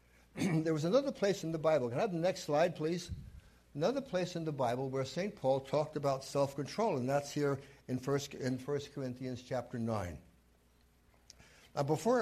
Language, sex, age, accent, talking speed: English, male, 60-79, American, 185 wpm